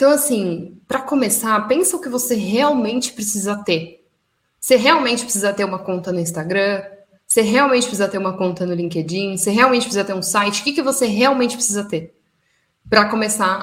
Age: 10-29